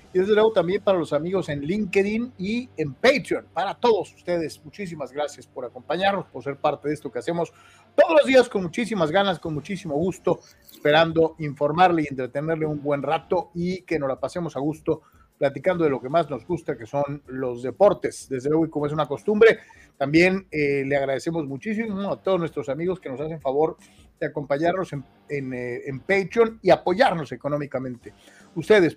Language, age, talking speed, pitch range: Spanish, 40-59, 185 wpm, 140-185 Hz